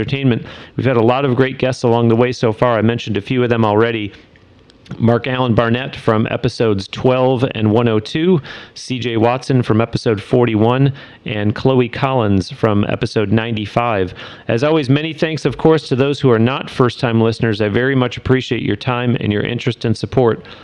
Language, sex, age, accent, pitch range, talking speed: English, male, 40-59, American, 110-130 Hz, 185 wpm